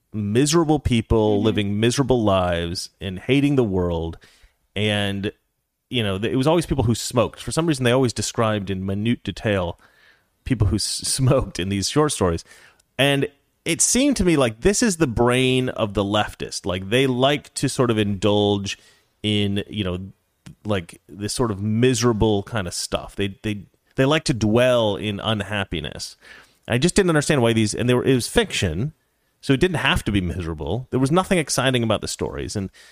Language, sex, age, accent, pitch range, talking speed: English, male, 30-49, American, 100-135 Hz, 185 wpm